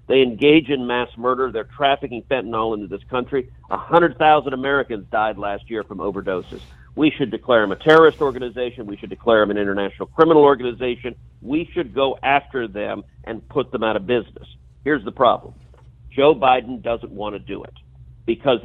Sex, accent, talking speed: male, American, 175 wpm